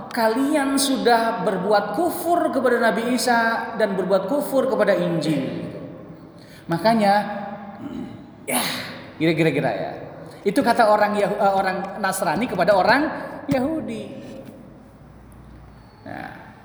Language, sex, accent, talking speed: Indonesian, male, native, 90 wpm